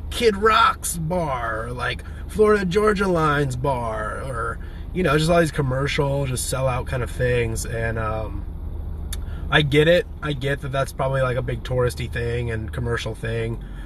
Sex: male